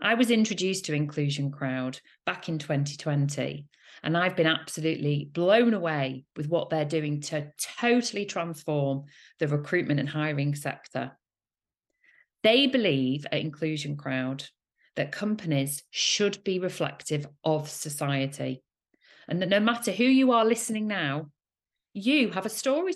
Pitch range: 145-185 Hz